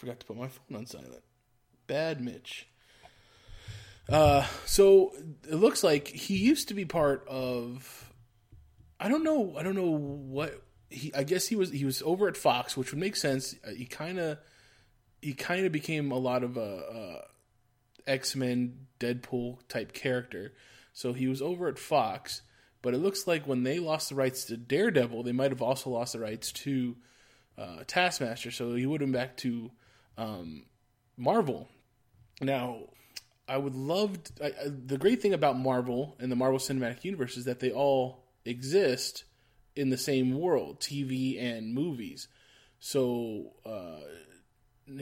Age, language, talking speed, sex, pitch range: 20-39, English, 165 wpm, male, 120-145 Hz